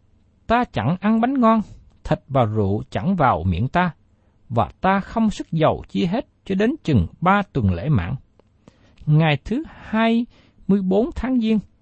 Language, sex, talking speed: Vietnamese, male, 170 wpm